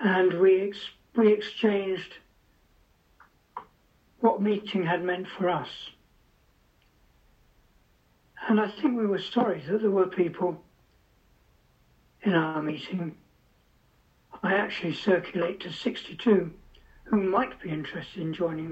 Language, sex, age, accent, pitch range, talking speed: English, male, 60-79, British, 155-205 Hz, 110 wpm